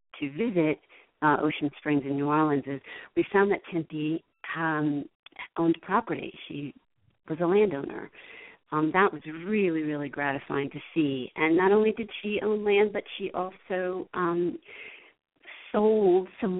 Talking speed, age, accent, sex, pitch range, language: 150 wpm, 40-59, American, female, 145-180 Hz, English